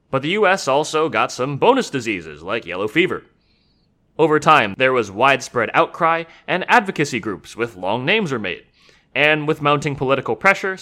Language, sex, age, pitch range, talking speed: English, male, 30-49, 130-170 Hz, 165 wpm